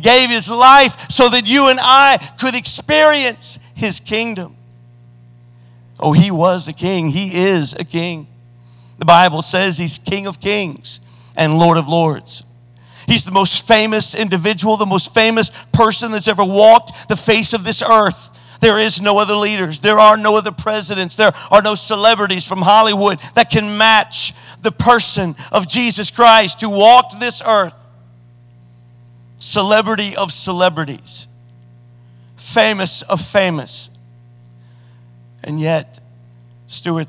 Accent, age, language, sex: American, 50-69, English, male